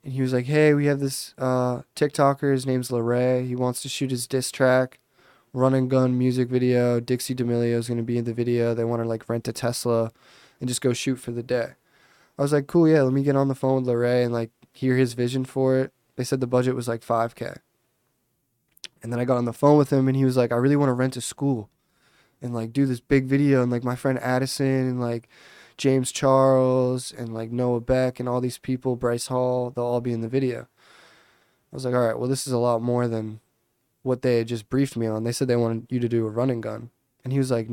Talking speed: 250 wpm